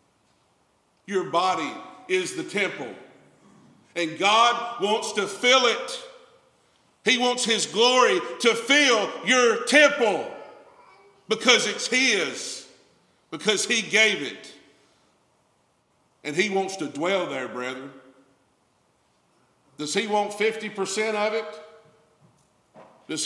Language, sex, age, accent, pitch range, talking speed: English, male, 50-69, American, 180-235 Hz, 90 wpm